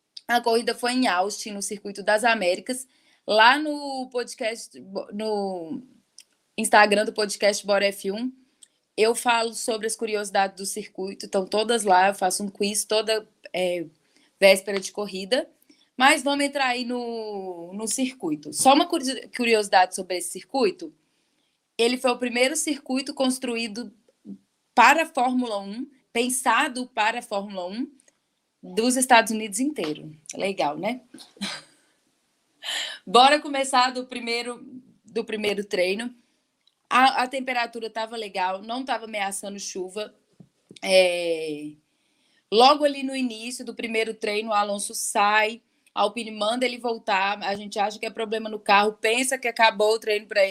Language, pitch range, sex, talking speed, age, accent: Portuguese, 205-255 Hz, female, 135 wpm, 10-29, Brazilian